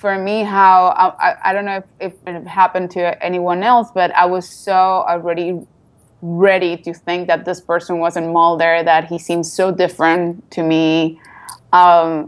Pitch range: 165-180 Hz